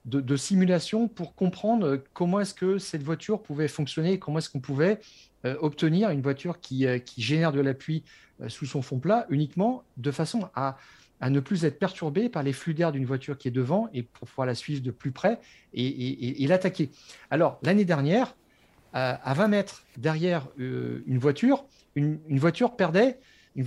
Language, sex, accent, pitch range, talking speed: French, male, French, 140-195 Hz, 185 wpm